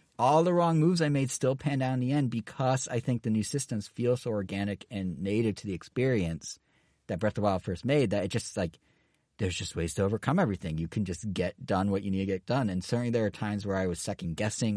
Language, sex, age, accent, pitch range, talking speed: English, male, 40-59, American, 90-115 Hz, 250 wpm